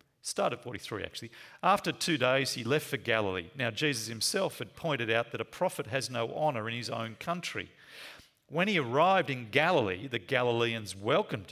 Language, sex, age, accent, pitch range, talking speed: English, male, 40-59, Australian, 130-180 Hz, 175 wpm